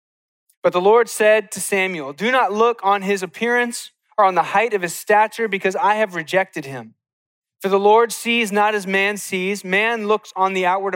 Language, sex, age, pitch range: English, male, 30-49, 165-205 Hz